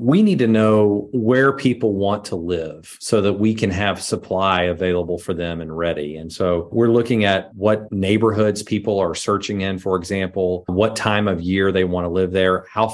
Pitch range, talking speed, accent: 90-105 Hz, 200 wpm, American